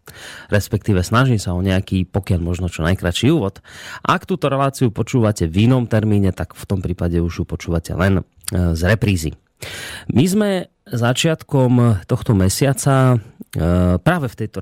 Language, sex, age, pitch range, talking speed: Slovak, male, 30-49, 90-115 Hz, 145 wpm